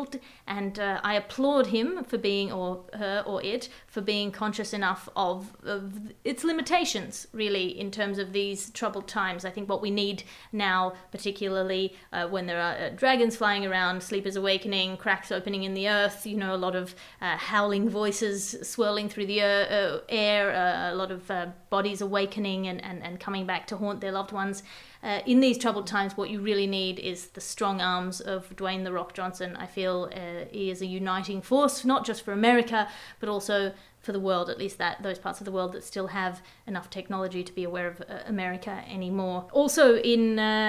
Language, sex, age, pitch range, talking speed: English, female, 30-49, 190-230 Hz, 200 wpm